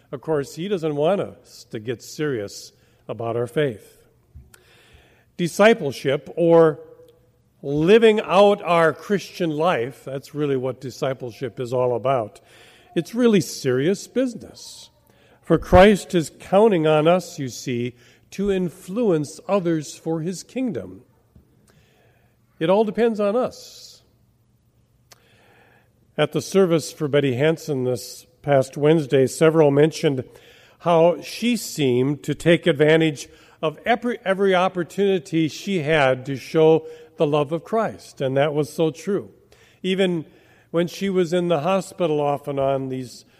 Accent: American